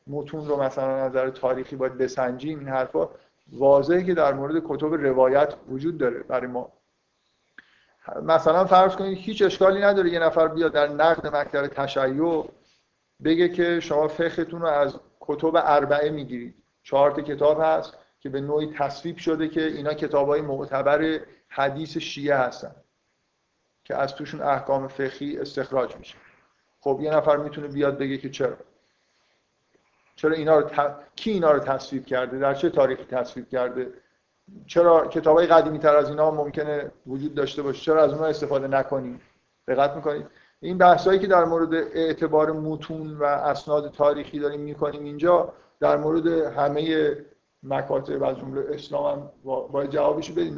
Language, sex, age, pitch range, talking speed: Persian, male, 50-69, 140-165 Hz, 155 wpm